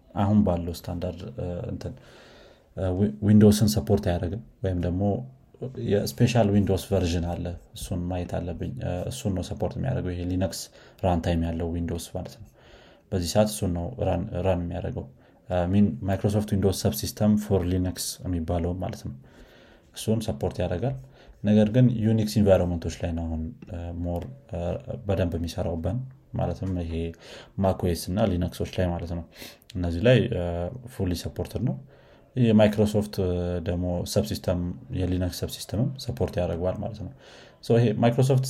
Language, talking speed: Amharic, 120 wpm